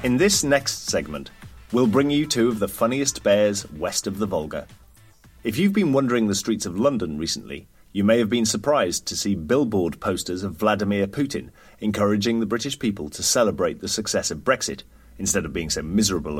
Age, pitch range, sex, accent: 30-49, 100-120 Hz, male, British